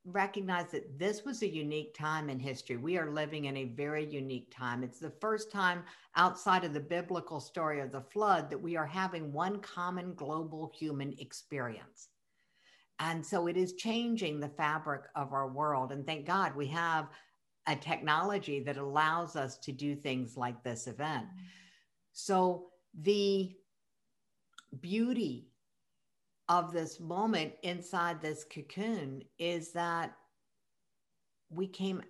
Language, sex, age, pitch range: English, female, 60-79, 150-185 Hz